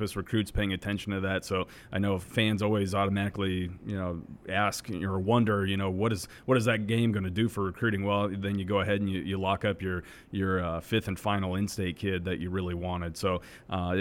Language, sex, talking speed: English, male, 225 wpm